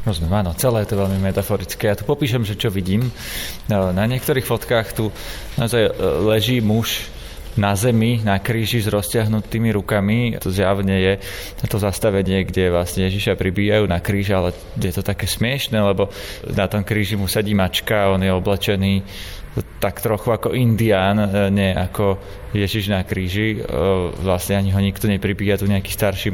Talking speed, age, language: 160 wpm, 20-39, Slovak